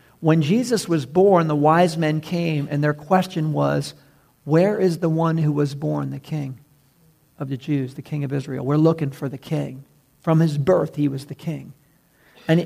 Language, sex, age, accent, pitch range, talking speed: English, male, 50-69, American, 150-180 Hz, 195 wpm